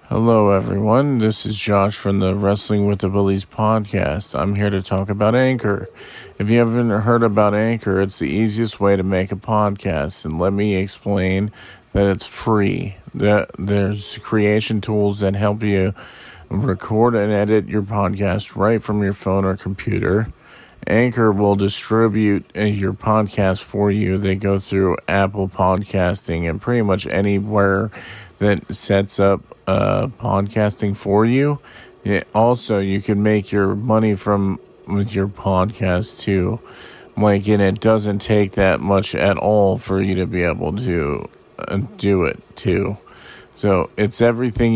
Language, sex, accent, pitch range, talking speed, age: English, male, American, 95-110 Hz, 150 wpm, 40-59